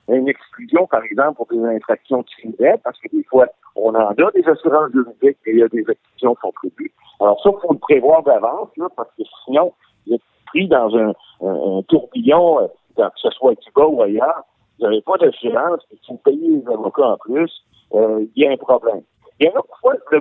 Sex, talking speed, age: male, 225 wpm, 50-69